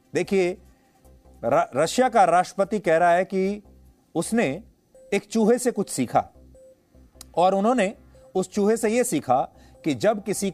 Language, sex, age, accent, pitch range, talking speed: English, male, 40-59, Indian, 130-200 Hz, 135 wpm